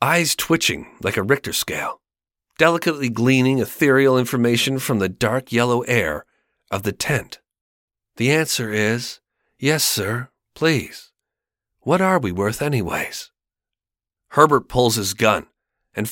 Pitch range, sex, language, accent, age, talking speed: 105-130 Hz, male, English, American, 40-59, 125 wpm